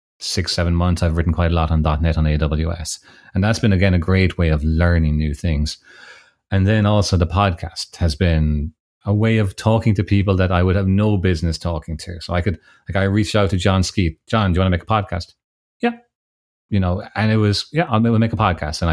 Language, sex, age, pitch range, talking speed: English, male, 30-49, 80-100 Hz, 235 wpm